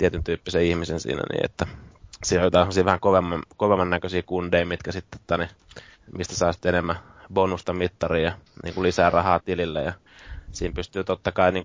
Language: Finnish